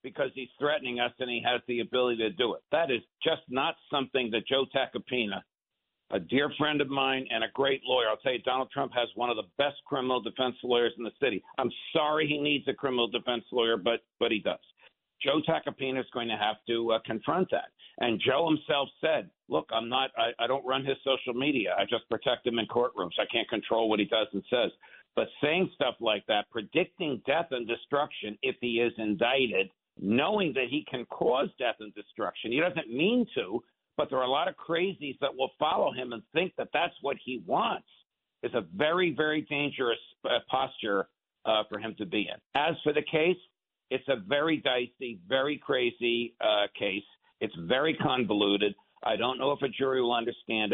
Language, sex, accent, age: English, male, American, 50-69